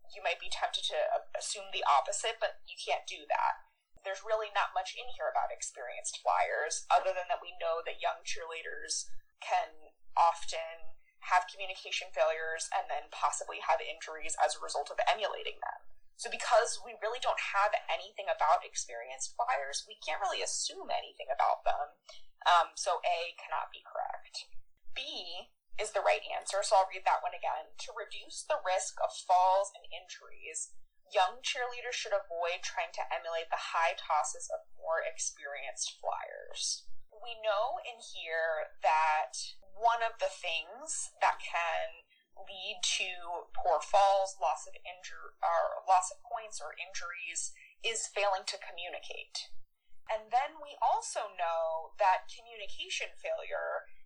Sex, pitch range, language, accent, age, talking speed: female, 180-290 Hz, English, American, 20-39, 155 wpm